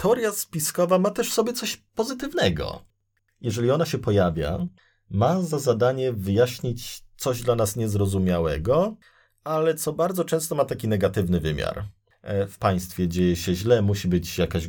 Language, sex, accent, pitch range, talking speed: Polish, male, native, 90-125 Hz, 145 wpm